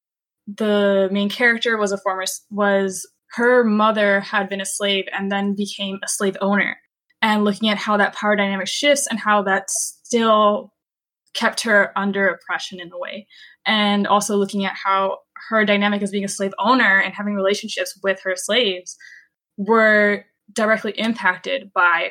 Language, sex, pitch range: English, female, 195-235 Hz